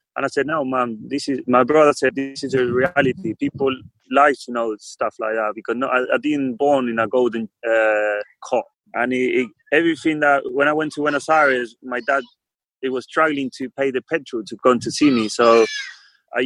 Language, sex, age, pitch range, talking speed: English, male, 20-39, 120-140 Hz, 205 wpm